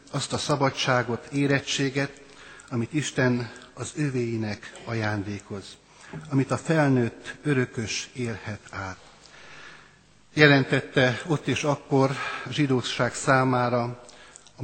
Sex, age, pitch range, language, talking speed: male, 60-79, 120-140 Hz, Hungarian, 90 wpm